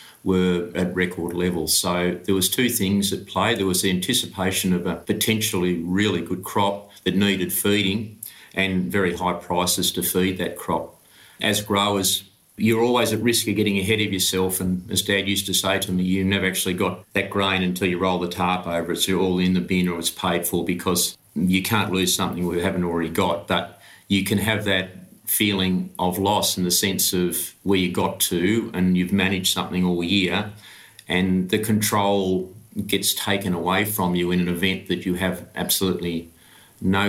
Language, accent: English, Australian